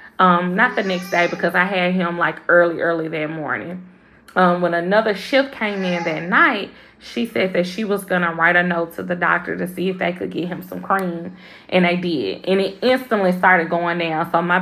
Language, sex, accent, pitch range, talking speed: English, female, American, 175-195 Hz, 225 wpm